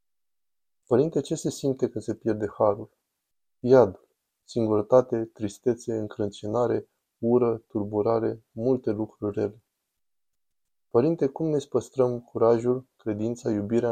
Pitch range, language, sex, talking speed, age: 110-125 Hz, Romanian, male, 105 wpm, 20-39